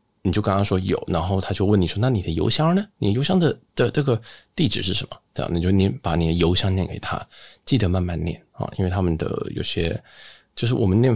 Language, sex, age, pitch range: Chinese, male, 20-39, 95-120 Hz